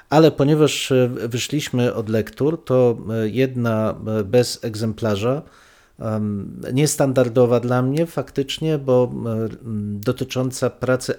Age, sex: 40-59, male